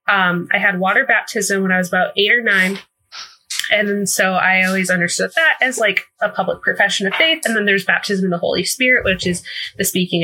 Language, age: English, 20-39